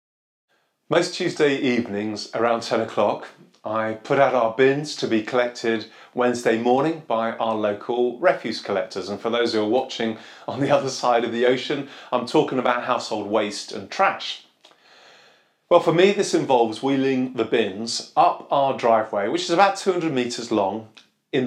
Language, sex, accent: English, male, British